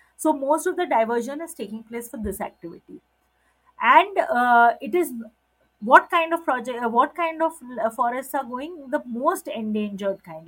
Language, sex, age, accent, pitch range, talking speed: Telugu, female, 30-49, native, 210-265 Hz, 180 wpm